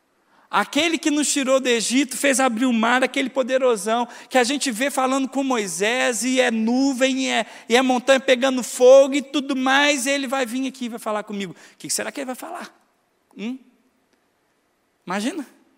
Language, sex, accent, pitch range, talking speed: Portuguese, male, Brazilian, 175-255 Hz, 185 wpm